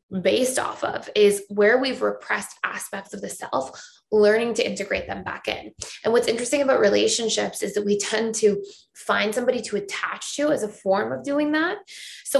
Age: 20-39